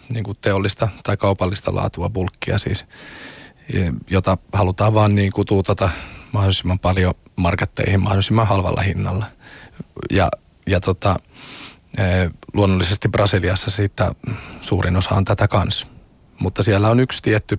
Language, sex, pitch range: Finnish, male, 95-105 Hz